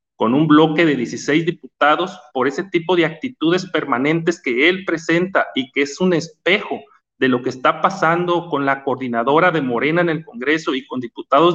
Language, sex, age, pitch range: Spanish, male, 40-59, 140-175 Hz